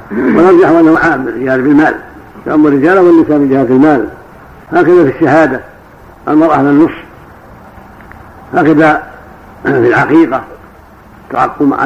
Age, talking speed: 60-79, 105 wpm